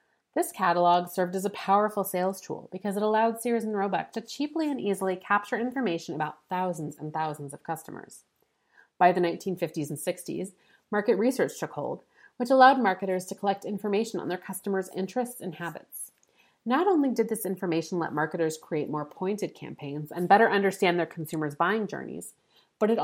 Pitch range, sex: 175-225 Hz, female